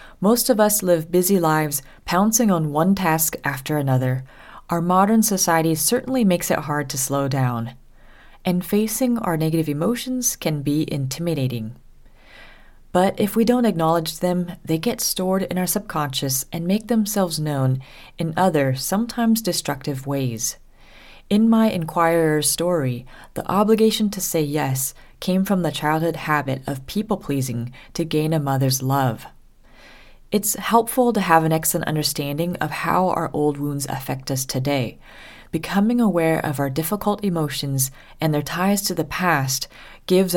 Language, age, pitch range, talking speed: English, 30-49, 145-195 Hz, 150 wpm